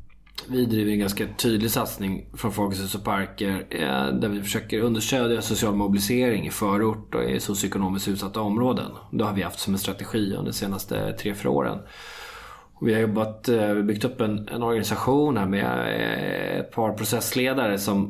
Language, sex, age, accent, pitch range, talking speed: Swedish, male, 20-39, native, 100-120 Hz, 160 wpm